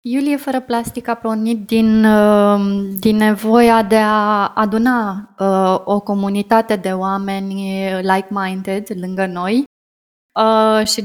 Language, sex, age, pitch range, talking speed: Romanian, female, 20-39, 195-230 Hz, 105 wpm